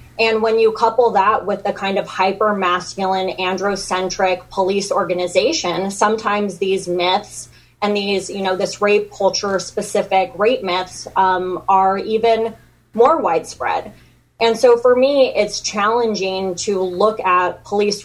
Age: 20-39